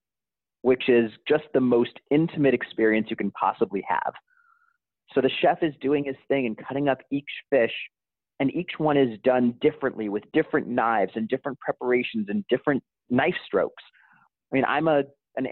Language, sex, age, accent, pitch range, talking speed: English, male, 40-59, American, 120-150 Hz, 170 wpm